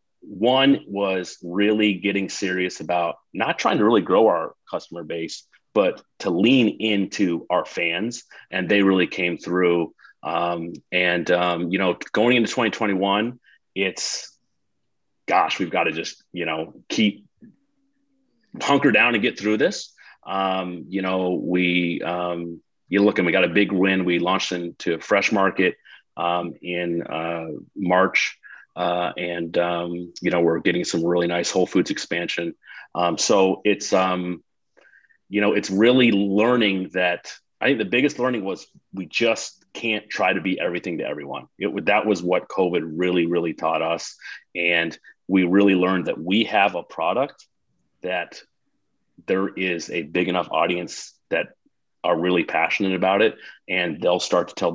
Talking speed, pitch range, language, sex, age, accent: 160 wpm, 85-105 Hz, English, male, 30-49, American